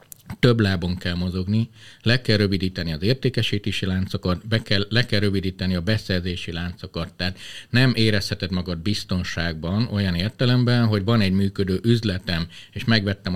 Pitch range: 95-120 Hz